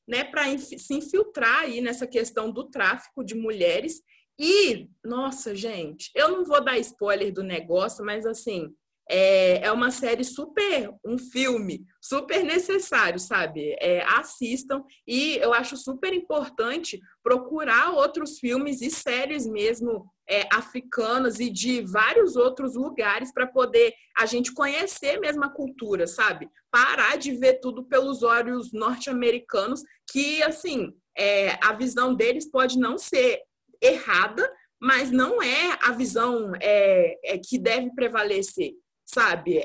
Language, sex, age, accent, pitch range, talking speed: Portuguese, female, 20-39, Brazilian, 220-290 Hz, 135 wpm